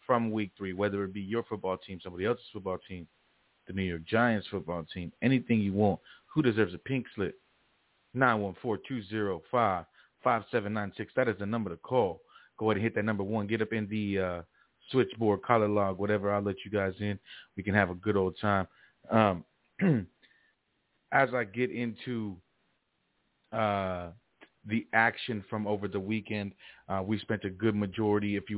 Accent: American